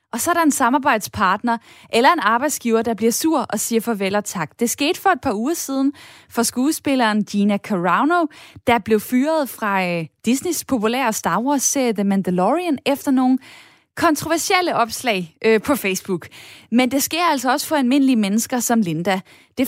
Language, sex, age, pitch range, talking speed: Danish, female, 20-39, 210-275 Hz, 175 wpm